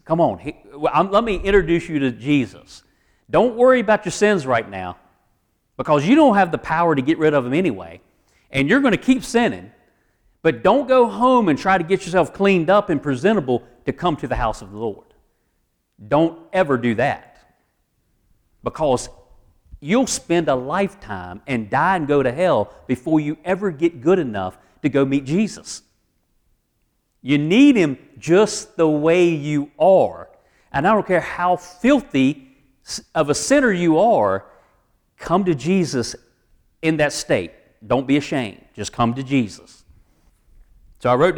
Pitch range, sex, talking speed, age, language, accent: 135-195 Hz, male, 165 wpm, 40-59, English, American